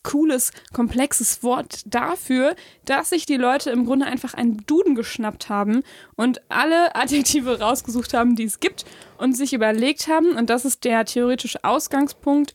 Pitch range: 240-285 Hz